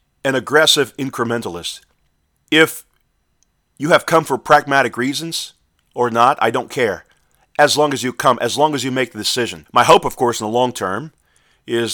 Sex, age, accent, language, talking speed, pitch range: male, 40-59, American, English, 180 wpm, 110-140 Hz